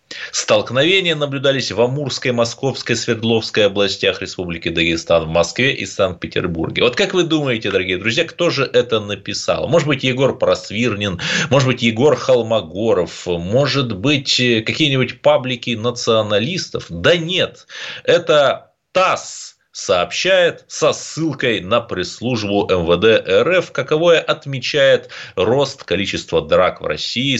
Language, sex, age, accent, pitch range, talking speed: Russian, male, 30-49, native, 110-160 Hz, 120 wpm